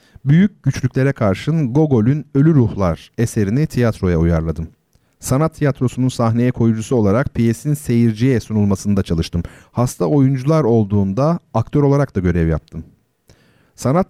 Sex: male